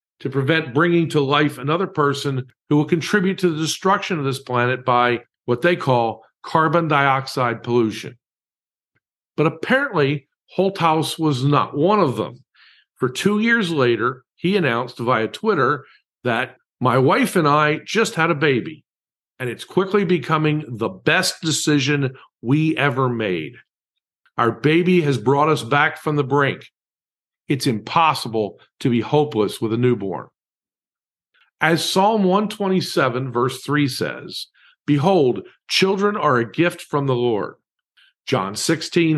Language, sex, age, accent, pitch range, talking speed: English, male, 50-69, American, 130-170 Hz, 140 wpm